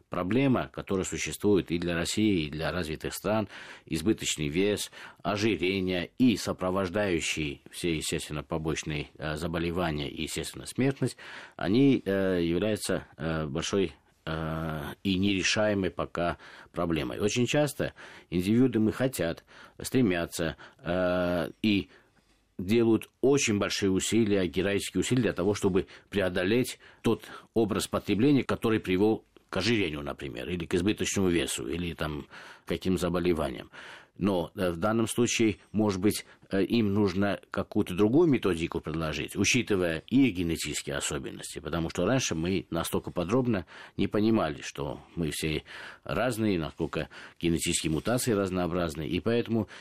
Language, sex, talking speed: Russian, male, 125 wpm